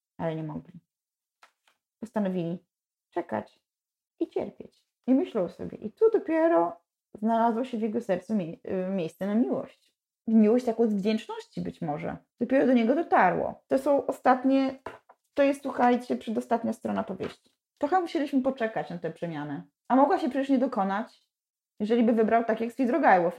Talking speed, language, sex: 155 wpm, Polish, female